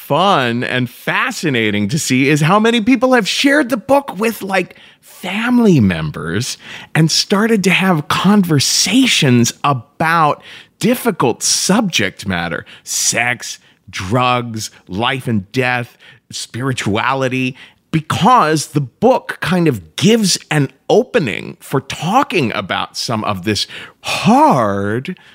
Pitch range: 115-180 Hz